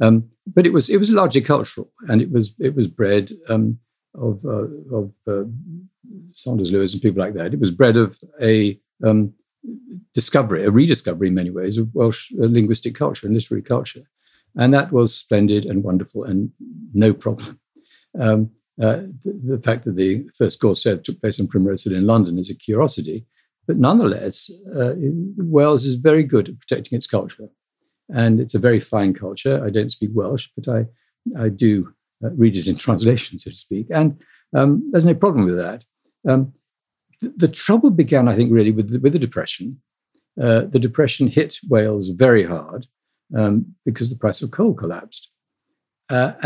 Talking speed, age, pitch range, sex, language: 180 wpm, 50-69, 105-140 Hz, male, English